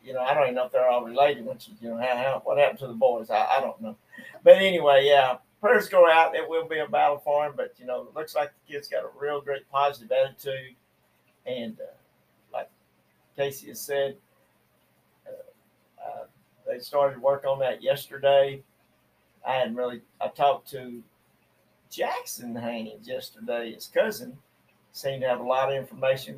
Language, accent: English, American